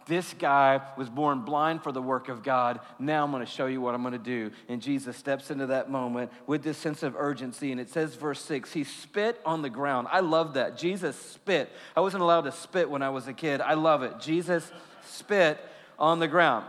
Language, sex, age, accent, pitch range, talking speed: English, male, 40-59, American, 135-195 Hz, 225 wpm